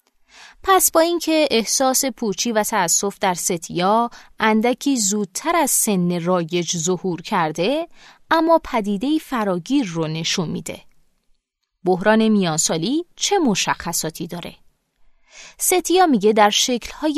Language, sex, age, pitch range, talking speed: Persian, female, 20-39, 185-255 Hz, 110 wpm